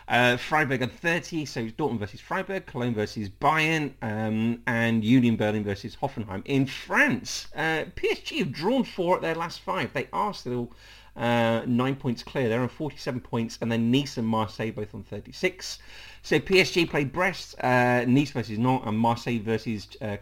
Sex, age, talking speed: male, 40-59, 180 wpm